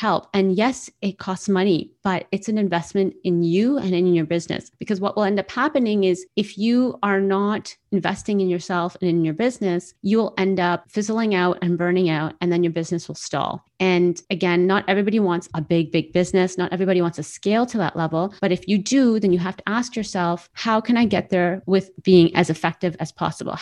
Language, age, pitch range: English, 30-49, 175-205 Hz